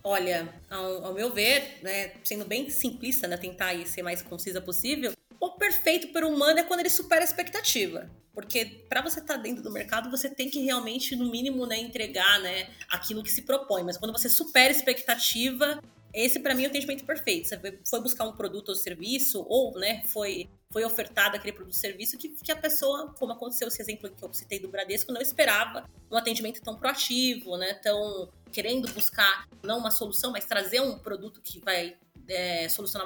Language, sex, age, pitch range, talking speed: Portuguese, female, 30-49, 200-275 Hz, 200 wpm